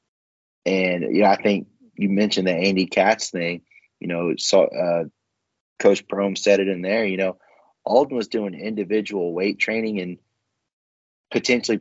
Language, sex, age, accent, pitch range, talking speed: English, male, 30-49, American, 95-110 Hz, 160 wpm